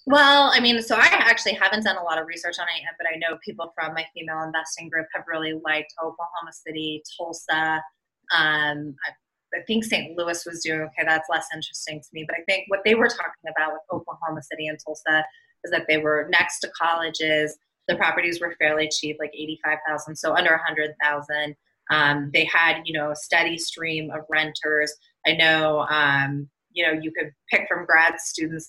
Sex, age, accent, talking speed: female, 20-39, American, 205 wpm